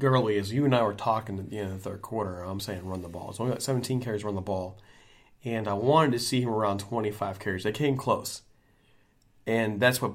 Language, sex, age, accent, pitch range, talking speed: English, male, 30-49, American, 100-125 Hz, 250 wpm